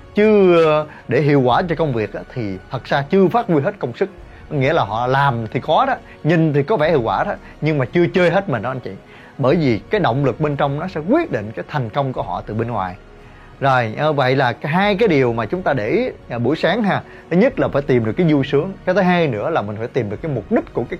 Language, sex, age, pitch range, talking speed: Vietnamese, male, 20-39, 125-175 Hz, 275 wpm